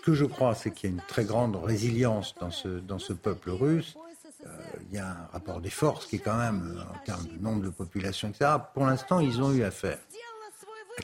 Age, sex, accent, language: 60-79, male, French, French